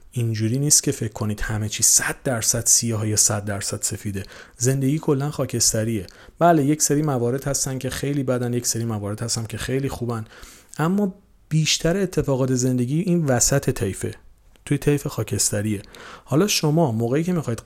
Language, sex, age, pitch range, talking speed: Persian, male, 40-59, 110-145 Hz, 160 wpm